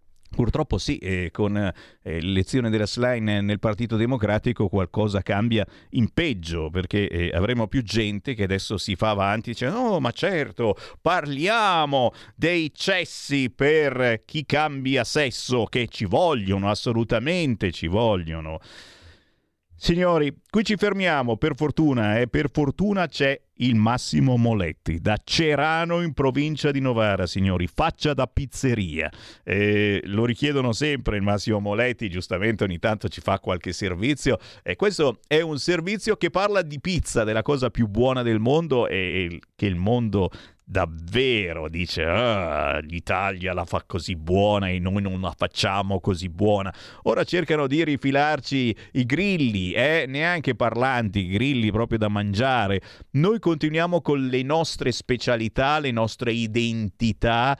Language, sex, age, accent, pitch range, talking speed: Italian, male, 50-69, native, 100-135 Hz, 140 wpm